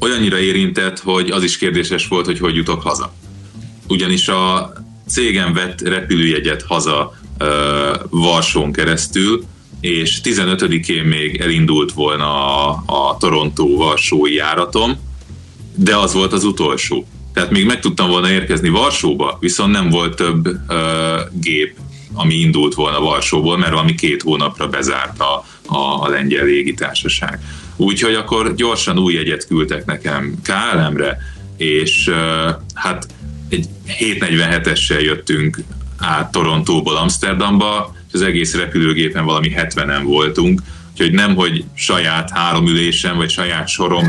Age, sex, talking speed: 30-49, male, 125 wpm